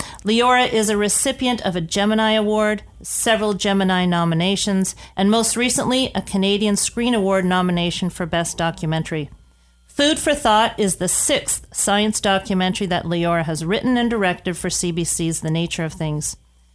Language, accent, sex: English, American, female